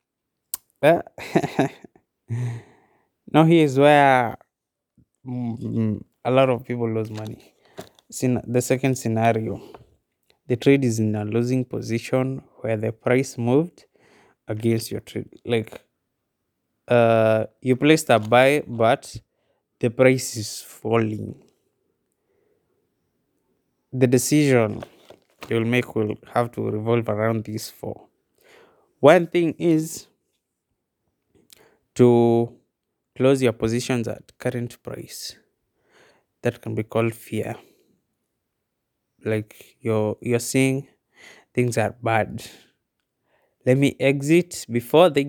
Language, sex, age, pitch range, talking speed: English, male, 20-39, 115-130 Hz, 105 wpm